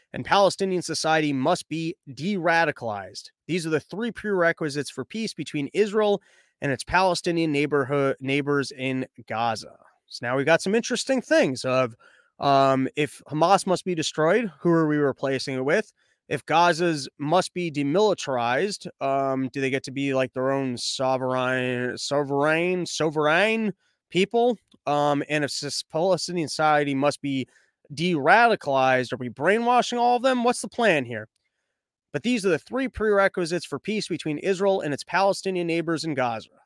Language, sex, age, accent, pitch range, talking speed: English, male, 20-39, American, 140-190 Hz, 155 wpm